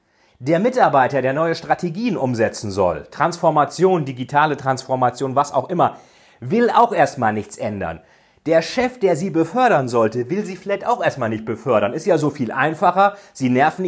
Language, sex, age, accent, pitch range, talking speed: German, male, 40-59, German, 130-185 Hz, 165 wpm